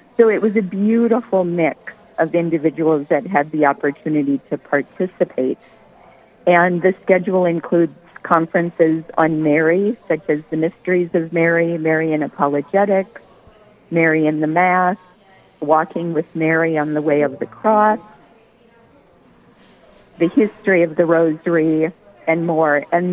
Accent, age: American, 50-69